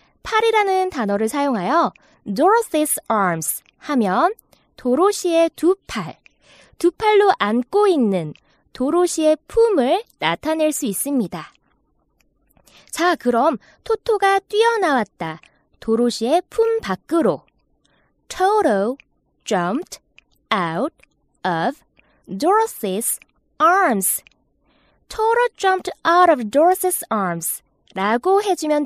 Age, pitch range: 20-39, 220-370 Hz